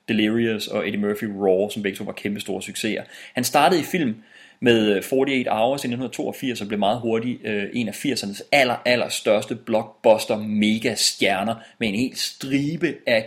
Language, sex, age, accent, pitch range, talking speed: English, male, 30-49, Danish, 105-125 Hz, 175 wpm